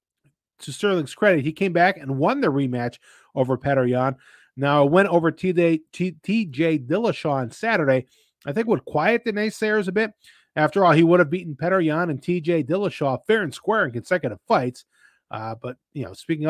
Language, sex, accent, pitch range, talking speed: English, male, American, 140-185 Hz, 185 wpm